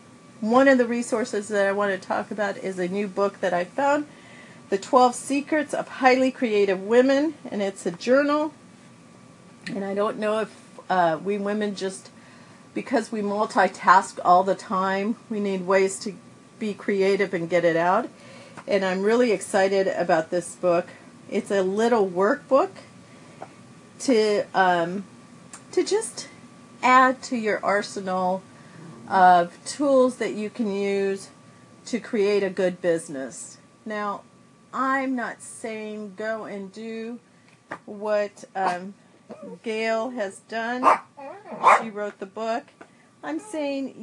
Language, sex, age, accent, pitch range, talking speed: English, female, 40-59, American, 195-240 Hz, 140 wpm